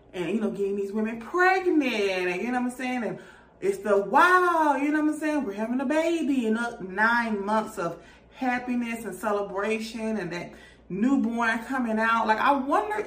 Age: 20-39